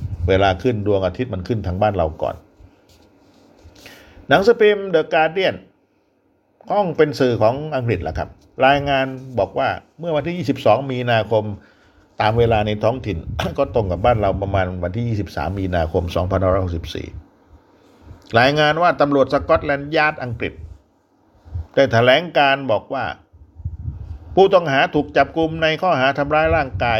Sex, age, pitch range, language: male, 60-79, 95-140 Hz, Thai